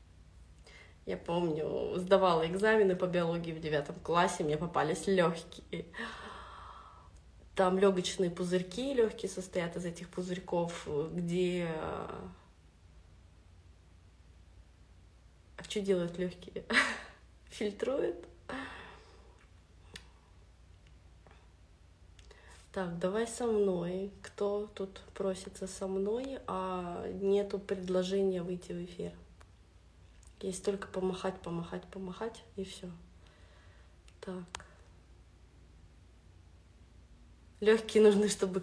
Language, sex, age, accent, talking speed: Russian, female, 20-39, native, 80 wpm